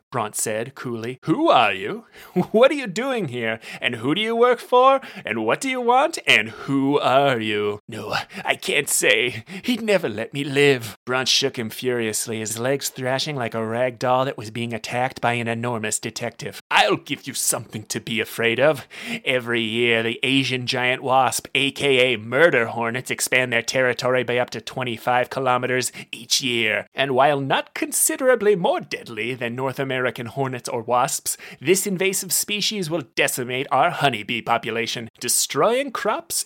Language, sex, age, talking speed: English, male, 30-49, 170 wpm